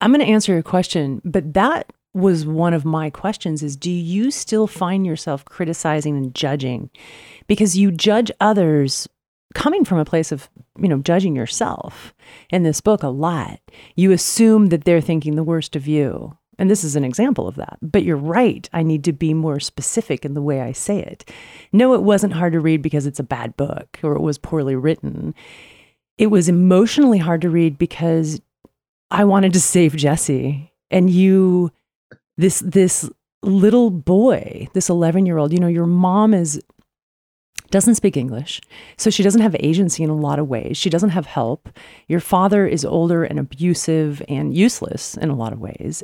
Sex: female